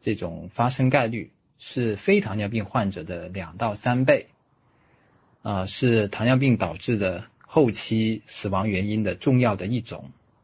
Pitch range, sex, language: 100-125 Hz, male, Chinese